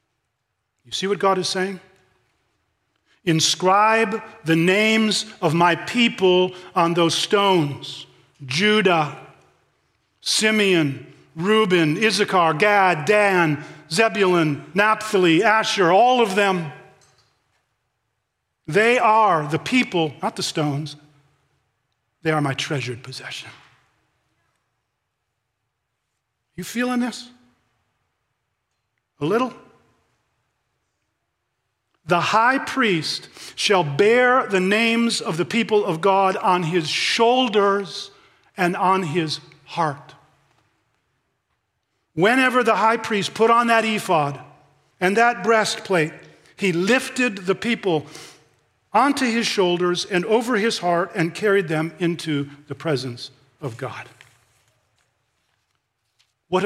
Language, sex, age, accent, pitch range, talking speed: English, male, 40-59, American, 135-210 Hz, 100 wpm